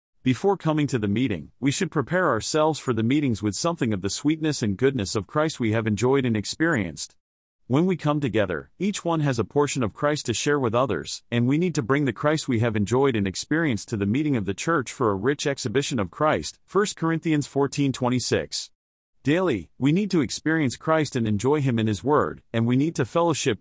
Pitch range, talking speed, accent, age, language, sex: 110-150 Hz, 220 wpm, American, 40-59, English, male